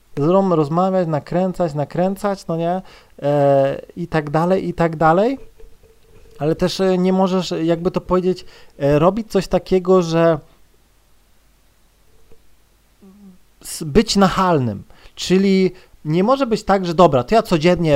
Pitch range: 150-195 Hz